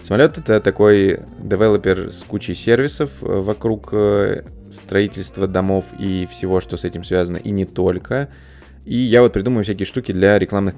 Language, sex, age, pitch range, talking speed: Russian, male, 20-39, 95-110 Hz, 150 wpm